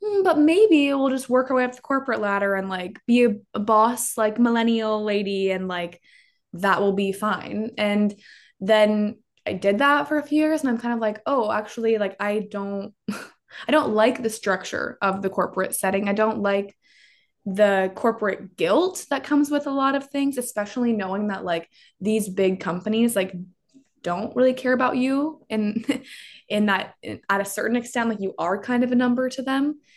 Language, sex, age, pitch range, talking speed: English, female, 20-39, 195-250 Hz, 190 wpm